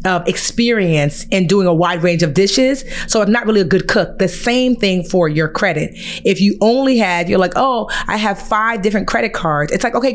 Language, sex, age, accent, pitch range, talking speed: English, female, 30-49, American, 170-215 Hz, 225 wpm